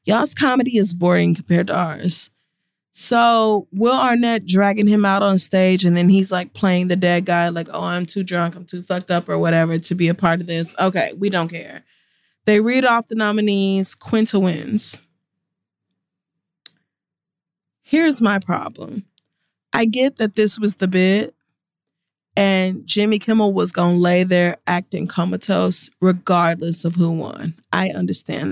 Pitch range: 180-215 Hz